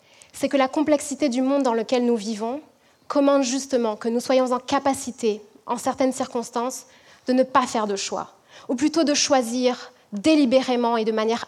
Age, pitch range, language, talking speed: 20-39, 230-275 Hz, French, 180 wpm